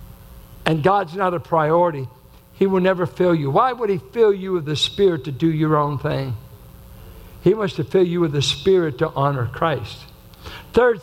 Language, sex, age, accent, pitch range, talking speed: English, male, 60-79, American, 130-190 Hz, 190 wpm